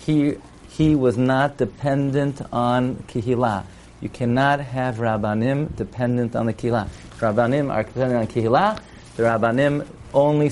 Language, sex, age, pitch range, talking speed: English, male, 40-59, 115-145 Hz, 130 wpm